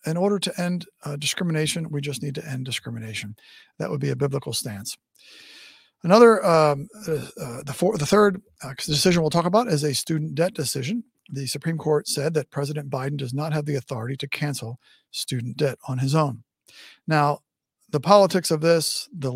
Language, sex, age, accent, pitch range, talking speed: English, male, 50-69, American, 135-170 Hz, 185 wpm